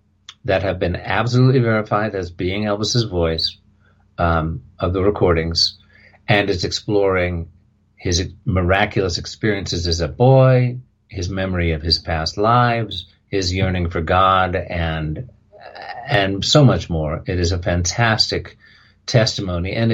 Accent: American